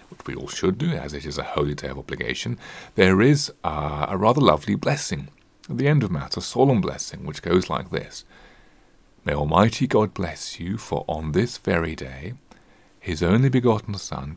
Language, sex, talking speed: English, male, 190 wpm